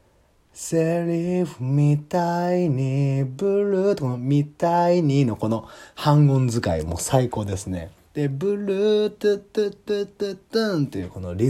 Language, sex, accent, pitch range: Japanese, male, native, 90-145 Hz